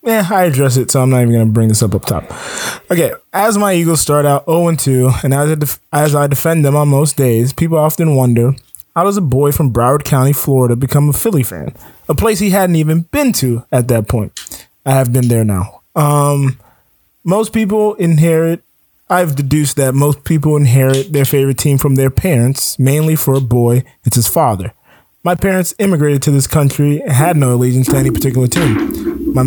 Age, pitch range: 20-39, 130-160 Hz